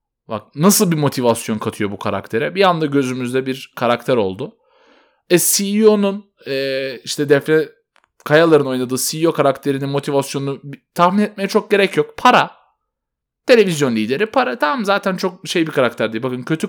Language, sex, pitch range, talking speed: Turkish, male, 140-195 Hz, 150 wpm